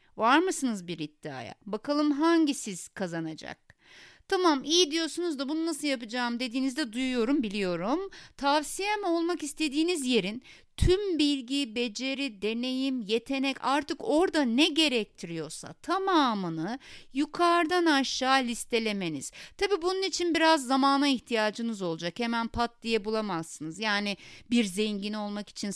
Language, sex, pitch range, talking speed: Turkish, female, 205-300 Hz, 115 wpm